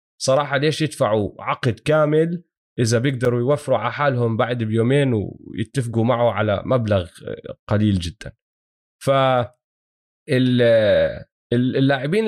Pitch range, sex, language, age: 115-145 Hz, male, Arabic, 20-39